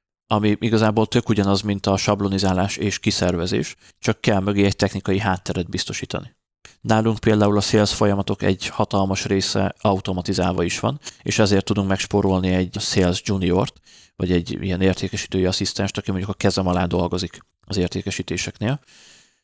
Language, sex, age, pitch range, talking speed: Hungarian, male, 30-49, 95-105 Hz, 150 wpm